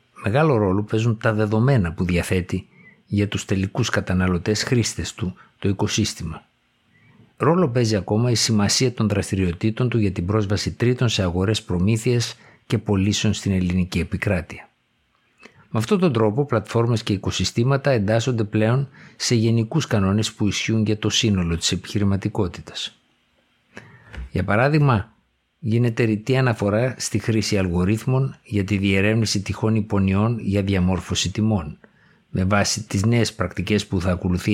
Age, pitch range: 60-79, 95-115 Hz